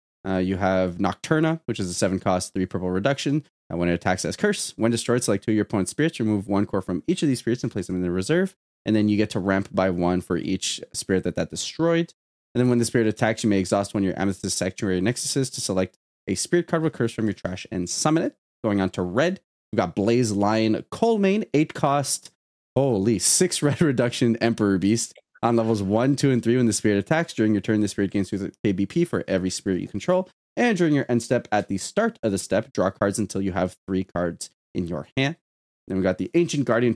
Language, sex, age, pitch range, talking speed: English, male, 20-39, 95-140 Hz, 245 wpm